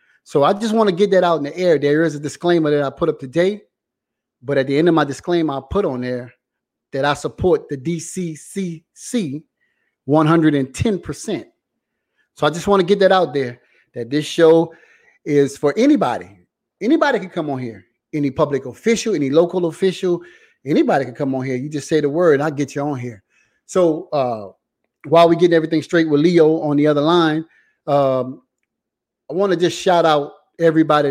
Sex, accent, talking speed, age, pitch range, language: male, American, 195 wpm, 30-49, 140-170 Hz, English